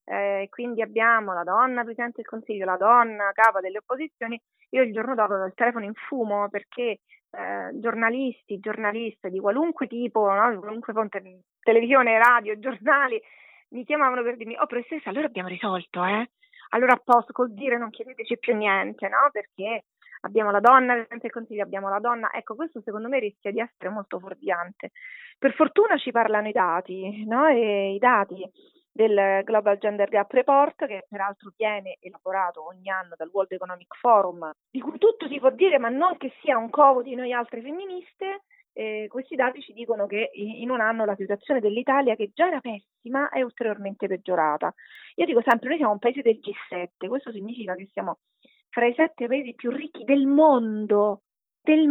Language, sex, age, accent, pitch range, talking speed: Italian, female, 30-49, native, 205-270 Hz, 180 wpm